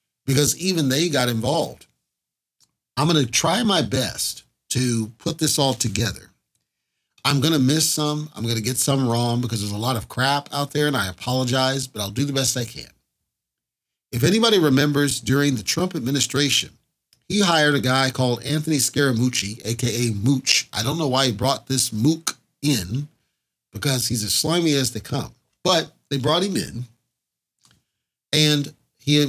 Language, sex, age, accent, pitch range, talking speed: English, male, 40-59, American, 120-150 Hz, 170 wpm